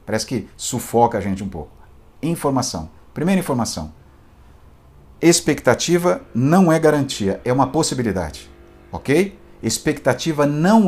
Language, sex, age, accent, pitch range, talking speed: Portuguese, male, 50-69, Brazilian, 95-160 Hz, 110 wpm